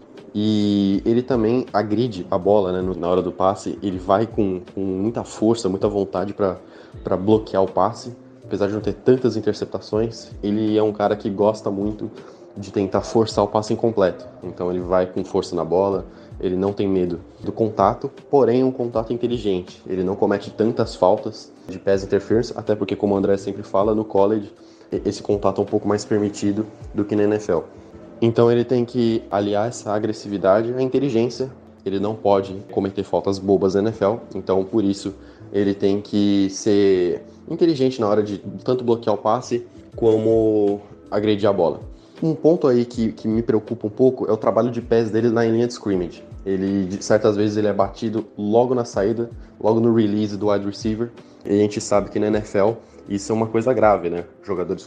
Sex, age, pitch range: male, 20-39, 100-115 Hz